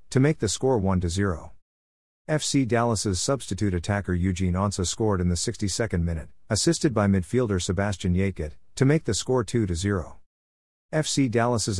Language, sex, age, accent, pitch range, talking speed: English, male, 50-69, American, 90-115 Hz, 155 wpm